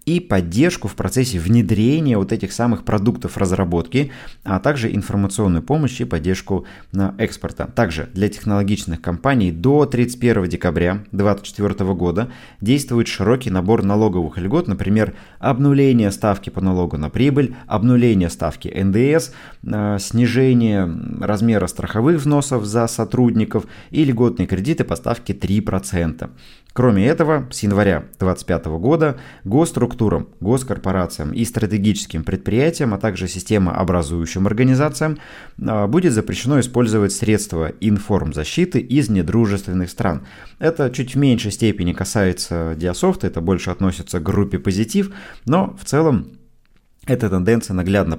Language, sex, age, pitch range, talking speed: Russian, male, 20-39, 90-120 Hz, 120 wpm